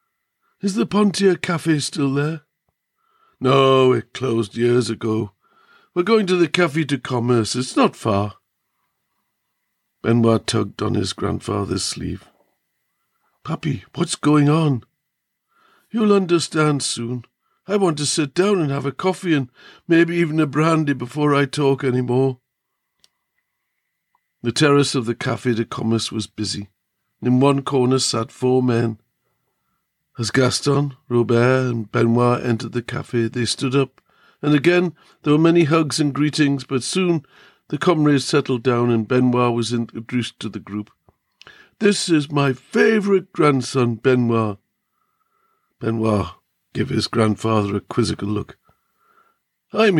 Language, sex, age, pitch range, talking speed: English, male, 60-79, 120-160 Hz, 135 wpm